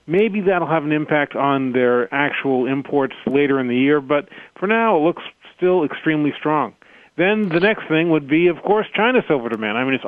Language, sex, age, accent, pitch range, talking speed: English, male, 40-59, American, 140-175 Hz, 210 wpm